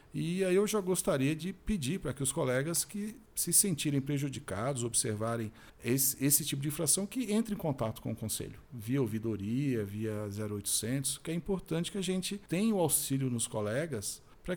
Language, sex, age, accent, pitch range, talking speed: Portuguese, male, 50-69, Brazilian, 125-165 Hz, 180 wpm